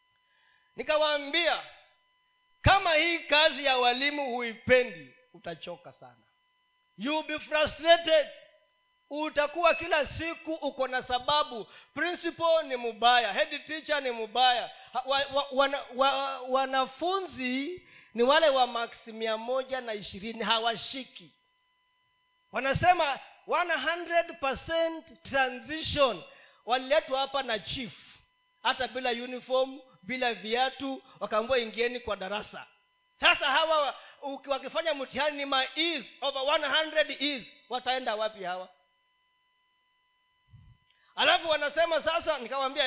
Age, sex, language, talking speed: 40-59, male, Swahili, 95 wpm